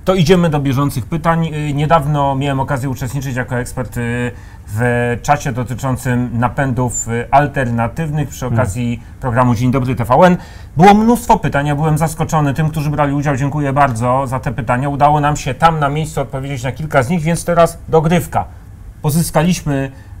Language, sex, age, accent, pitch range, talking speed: Polish, male, 30-49, native, 125-165 Hz, 155 wpm